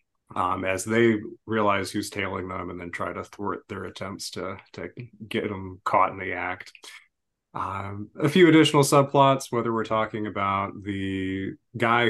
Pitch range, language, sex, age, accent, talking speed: 100-120 Hz, English, male, 30-49, American, 165 wpm